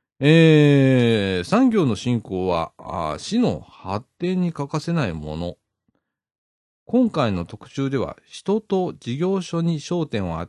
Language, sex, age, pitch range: Japanese, male, 40-59, 110-180 Hz